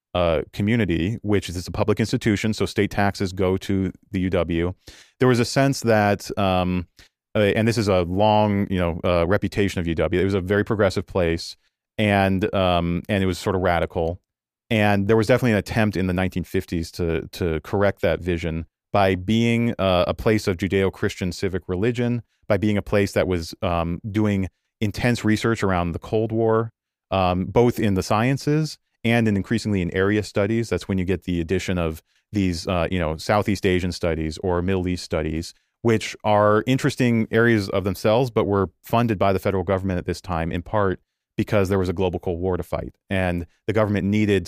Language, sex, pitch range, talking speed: English, male, 90-110 Hz, 195 wpm